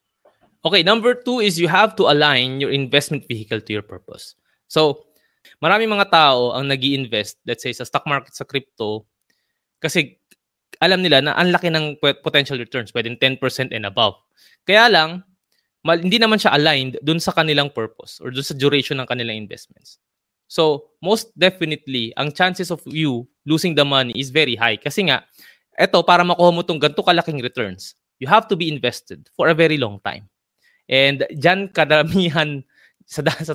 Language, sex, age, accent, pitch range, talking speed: Filipino, male, 20-39, native, 125-165 Hz, 175 wpm